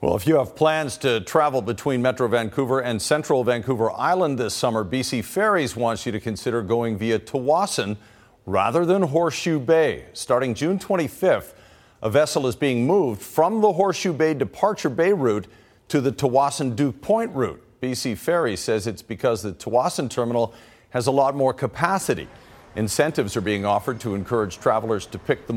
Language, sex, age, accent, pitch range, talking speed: English, male, 50-69, American, 115-160 Hz, 170 wpm